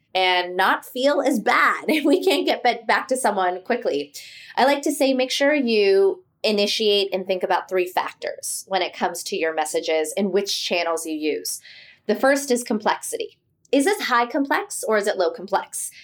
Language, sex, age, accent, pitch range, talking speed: English, female, 20-39, American, 185-265 Hz, 185 wpm